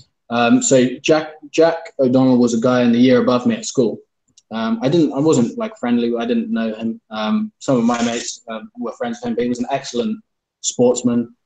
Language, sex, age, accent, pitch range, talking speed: English, male, 20-39, British, 110-150 Hz, 220 wpm